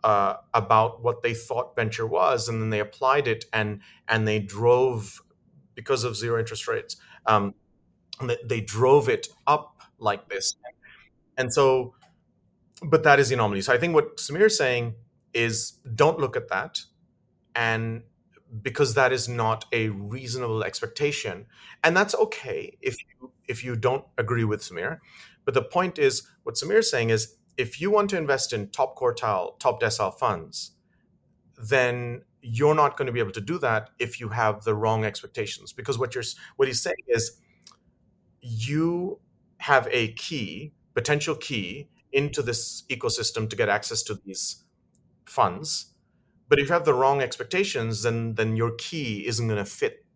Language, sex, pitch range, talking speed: English, male, 115-150 Hz, 165 wpm